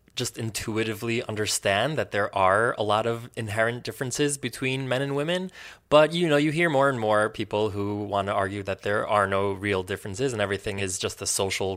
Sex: male